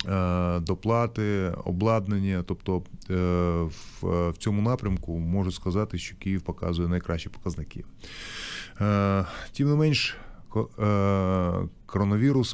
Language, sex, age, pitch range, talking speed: Ukrainian, male, 30-49, 90-110 Hz, 80 wpm